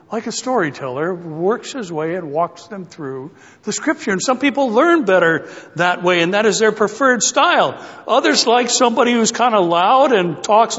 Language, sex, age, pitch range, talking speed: English, male, 60-79, 220-315 Hz, 190 wpm